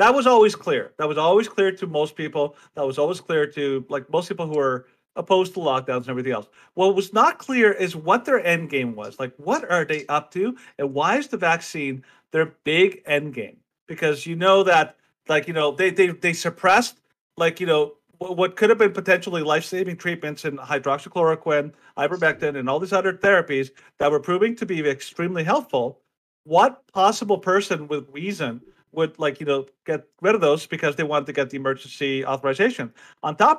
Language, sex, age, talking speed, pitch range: English, male, 40-59, 200 wpm, 150-195 Hz